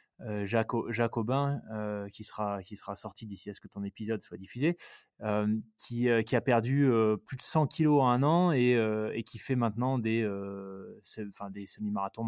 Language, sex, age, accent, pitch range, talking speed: French, male, 20-39, French, 110-140 Hz, 200 wpm